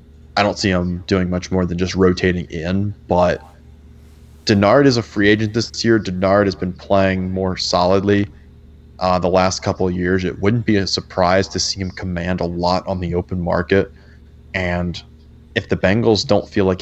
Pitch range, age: 85-95 Hz, 20-39